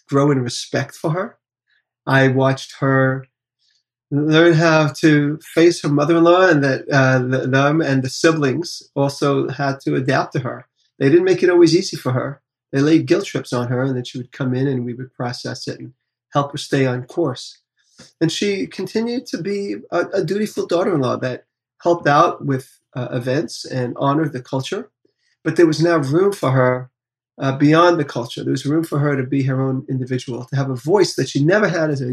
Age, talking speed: 30-49, 200 wpm